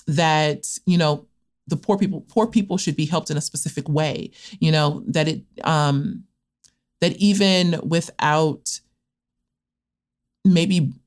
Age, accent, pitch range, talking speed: 30-49, American, 140-175 Hz, 130 wpm